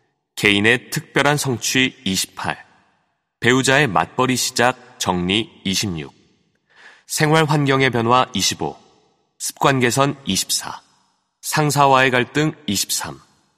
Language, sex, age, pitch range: Korean, male, 30-49, 110-145 Hz